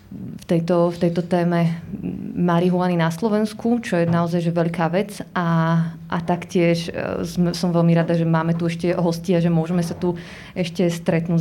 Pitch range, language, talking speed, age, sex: 175-195 Hz, Slovak, 170 wpm, 20-39, female